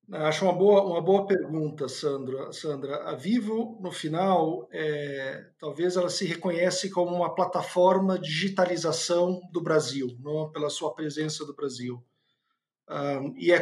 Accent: Brazilian